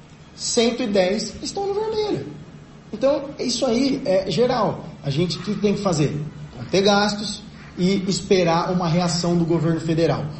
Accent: Brazilian